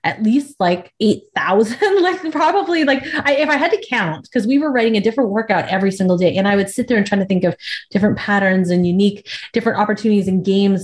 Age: 30-49